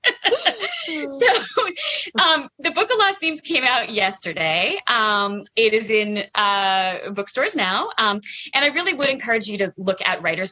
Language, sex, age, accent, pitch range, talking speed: English, female, 20-39, American, 180-255 Hz, 160 wpm